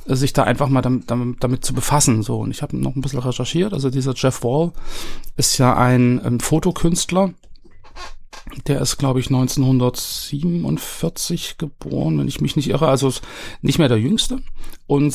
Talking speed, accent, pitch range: 170 wpm, German, 120-145 Hz